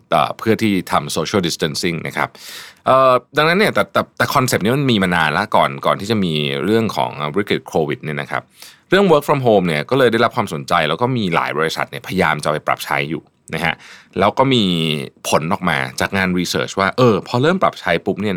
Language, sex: Thai, male